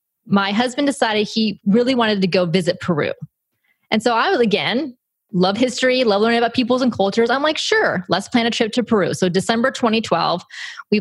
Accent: American